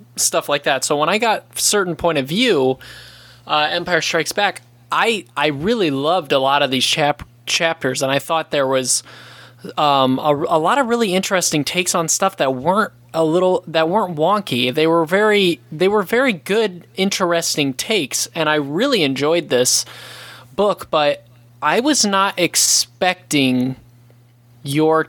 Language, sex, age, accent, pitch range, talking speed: English, male, 20-39, American, 135-170 Hz, 165 wpm